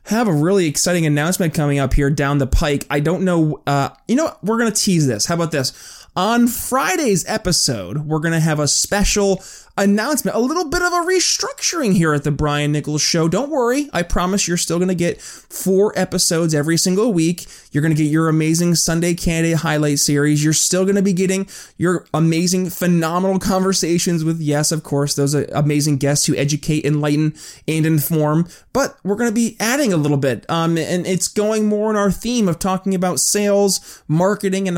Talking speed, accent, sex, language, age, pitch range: 205 wpm, American, male, English, 20-39, 150-200 Hz